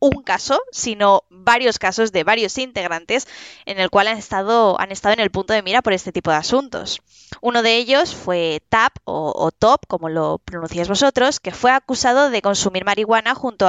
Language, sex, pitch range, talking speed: Spanish, female, 185-240 Hz, 195 wpm